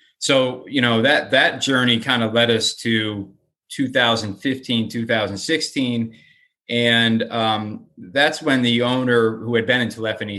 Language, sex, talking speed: English, male, 140 wpm